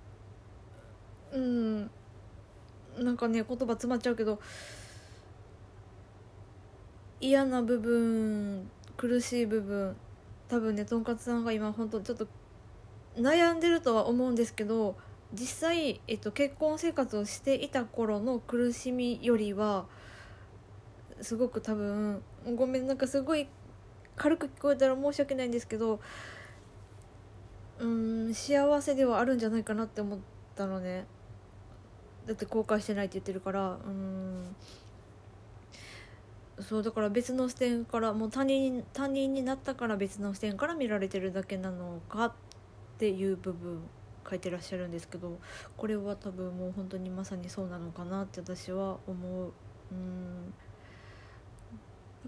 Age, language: 20-39, Japanese